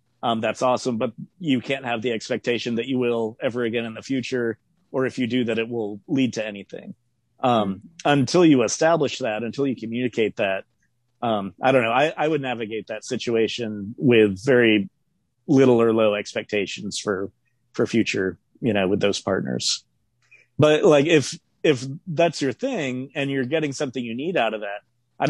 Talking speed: 185 wpm